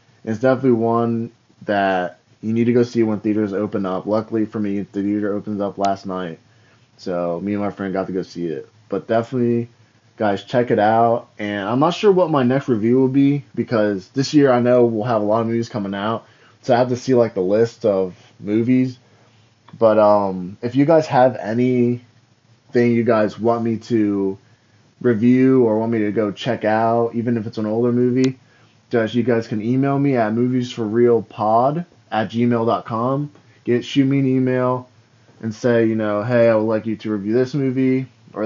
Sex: male